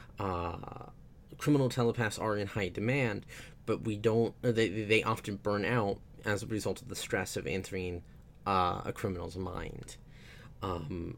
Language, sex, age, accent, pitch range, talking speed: English, male, 20-39, American, 100-125 Hz, 150 wpm